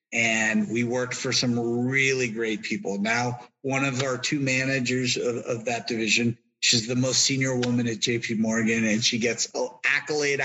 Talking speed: 180 wpm